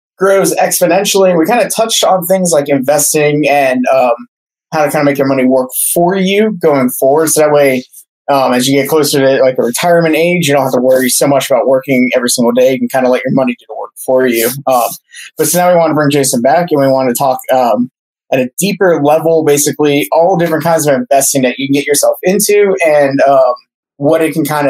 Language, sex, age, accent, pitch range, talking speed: English, male, 20-39, American, 130-160 Hz, 240 wpm